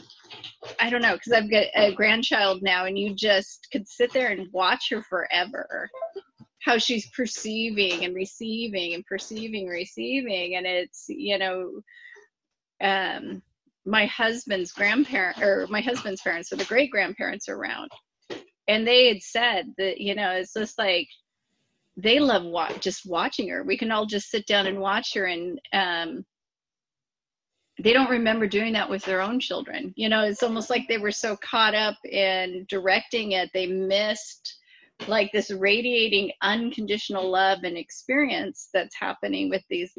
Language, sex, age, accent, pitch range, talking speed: English, female, 30-49, American, 195-250 Hz, 160 wpm